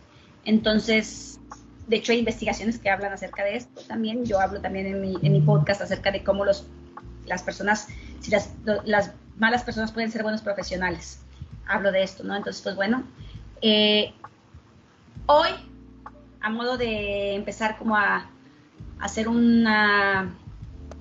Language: Spanish